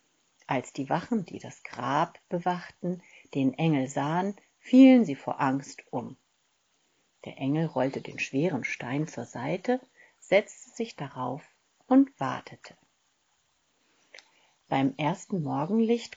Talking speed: 115 wpm